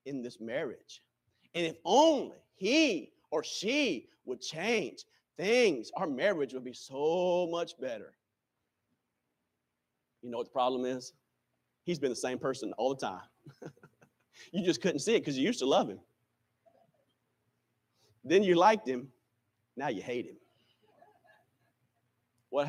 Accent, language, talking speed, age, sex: American, English, 140 wpm, 40-59, male